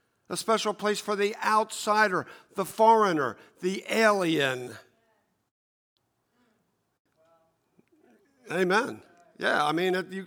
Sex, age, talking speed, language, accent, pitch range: male, 50-69, 90 wpm, English, American, 140-195 Hz